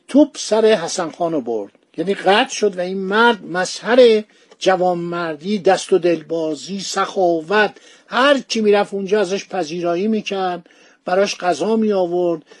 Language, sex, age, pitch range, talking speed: Persian, male, 60-79, 170-210 Hz, 125 wpm